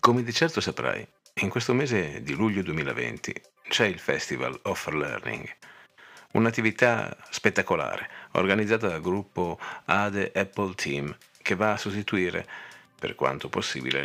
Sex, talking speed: male, 130 wpm